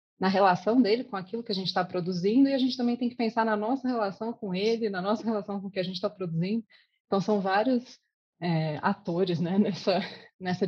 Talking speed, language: 225 wpm, Portuguese